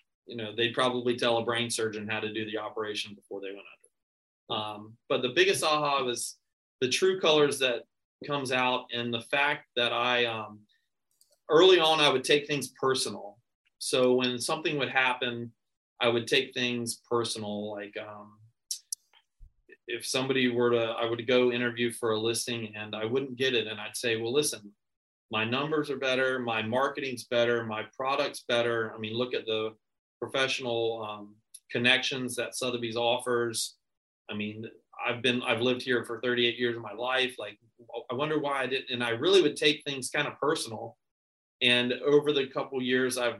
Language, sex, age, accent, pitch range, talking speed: English, male, 30-49, American, 115-130 Hz, 180 wpm